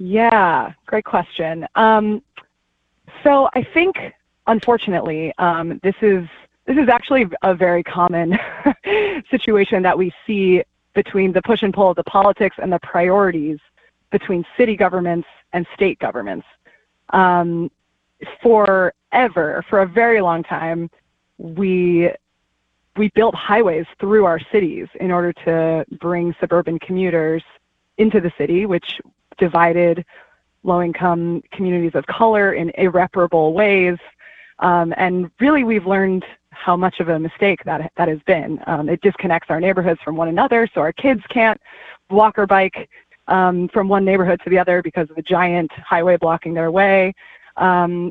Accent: American